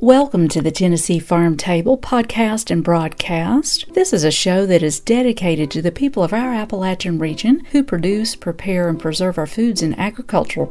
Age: 50-69